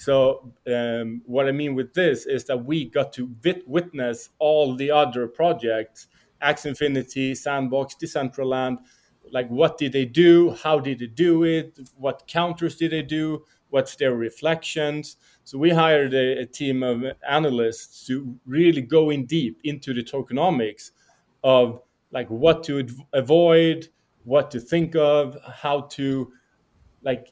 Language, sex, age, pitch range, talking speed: English, male, 30-49, 125-155 Hz, 145 wpm